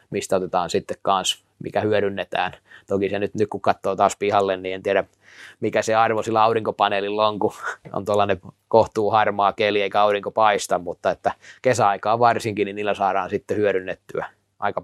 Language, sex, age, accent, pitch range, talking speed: Finnish, male, 20-39, native, 100-115 Hz, 165 wpm